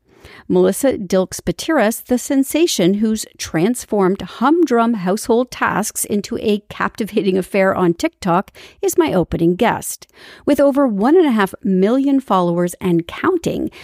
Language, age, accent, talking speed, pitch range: English, 50-69, American, 125 wpm, 185-270 Hz